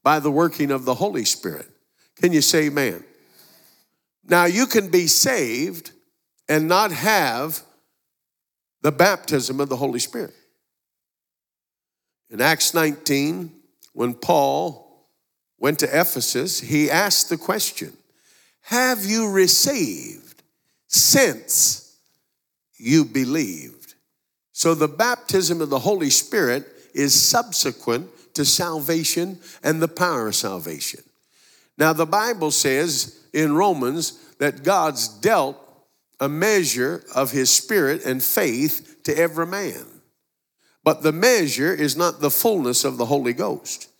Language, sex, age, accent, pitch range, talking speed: English, male, 50-69, American, 140-175 Hz, 120 wpm